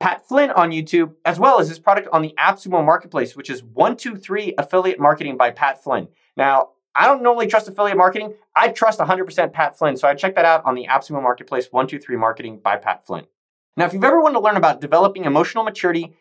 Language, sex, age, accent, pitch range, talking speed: English, male, 30-49, American, 155-225 Hz, 215 wpm